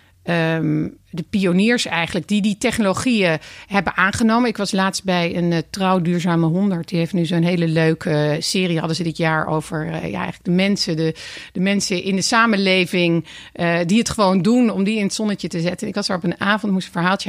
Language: Dutch